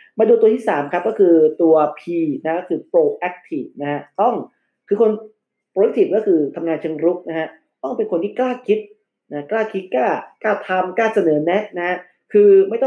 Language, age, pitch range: Thai, 30-49, 150-210 Hz